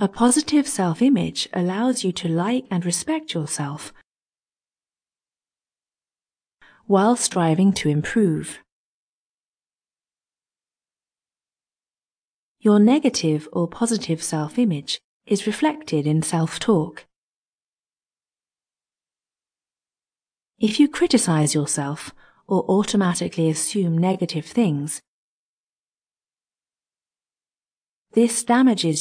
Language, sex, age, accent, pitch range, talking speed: English, female, 30-49, British, 155-230 Hz, 70 wpm